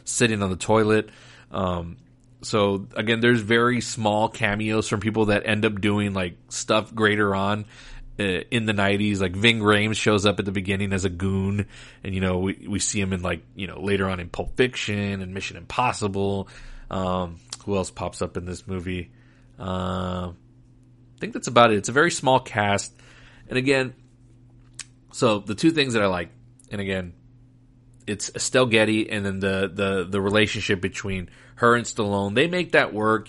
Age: 30-49